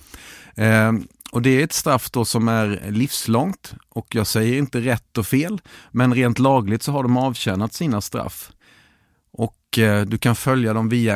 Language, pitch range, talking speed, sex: English, 105-125 Hz, 175 wpm, male